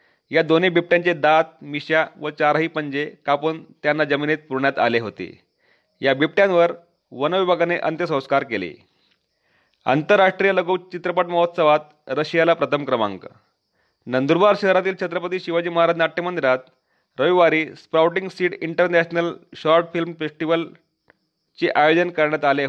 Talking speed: 110 wpm